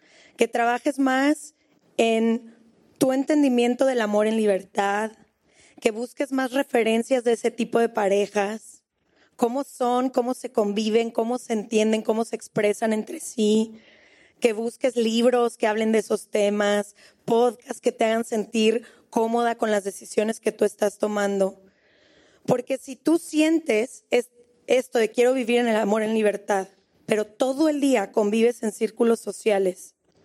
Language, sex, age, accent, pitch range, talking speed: Spanish, female, 20-39, Mexican, 215-255 Hz, 150 wpm